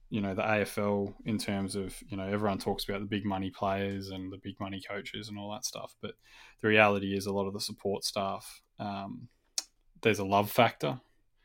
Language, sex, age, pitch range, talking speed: English, male, 20-39, 100-105 Hz, 210 wpm